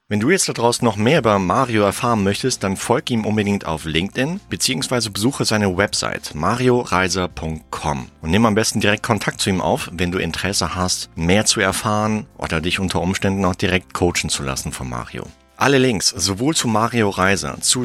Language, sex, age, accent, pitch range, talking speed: German, male, 40-59, German, 80-110 Hz, 185 wpm